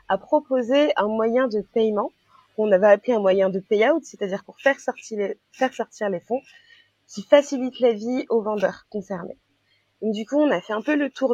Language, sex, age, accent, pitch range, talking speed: French, female, 20-39, French, 205-260 Hz, 205 wpm